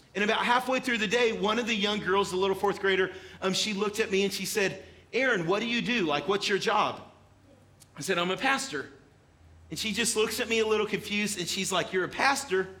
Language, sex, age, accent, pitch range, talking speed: English, male, 40-59, American, 175-215 Hz, 245 wpm